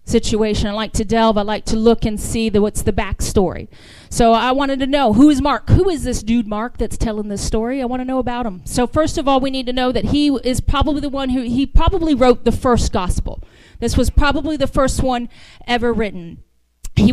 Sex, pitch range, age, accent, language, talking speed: female, 230-300 Hz, 40-59, American, English, 240 wpm